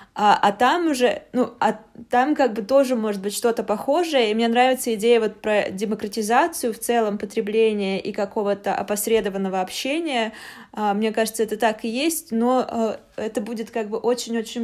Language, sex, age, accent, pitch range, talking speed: Russian, female, 20-39, native, 205-240 Hz, 170 wpm